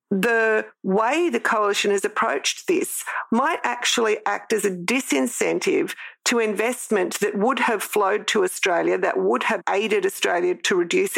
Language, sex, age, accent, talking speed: English, female, 40-59, Australian, 150 wpm